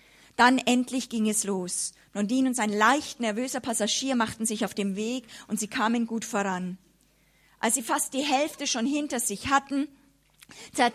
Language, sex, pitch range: German, female, 215-295 Hz